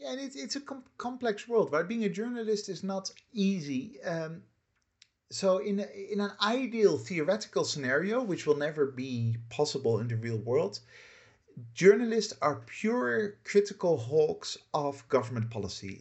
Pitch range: 125-185 Hz